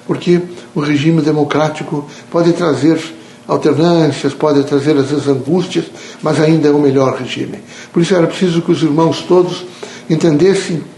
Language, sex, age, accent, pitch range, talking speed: Portuguese, male, 60-79, Brazilian, 145-170 Hz, 155 wpm